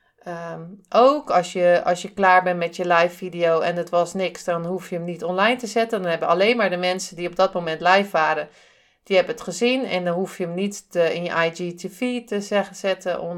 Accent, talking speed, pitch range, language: Dutch, 220 wpm, 175-200 Hz, Dutch